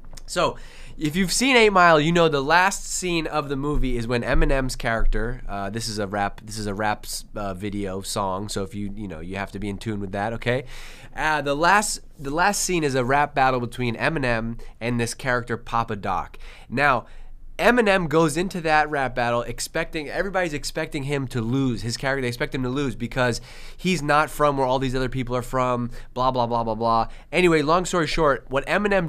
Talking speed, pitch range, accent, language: 210 wpm, 120-165 Hz, American, English